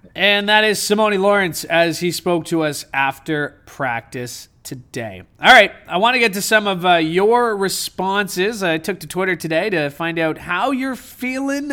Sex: male